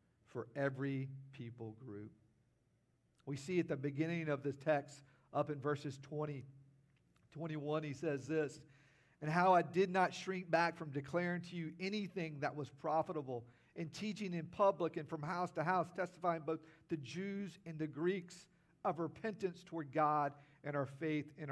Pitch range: 135-170 Hz